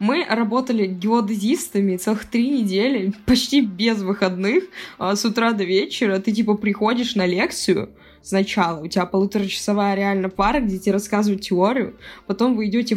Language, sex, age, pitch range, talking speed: Russian, female, 20-39, 195-230 Hz, 145 wpm